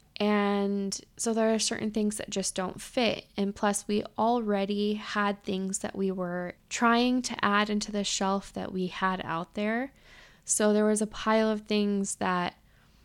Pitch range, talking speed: 190-220 Hz, 175 wpm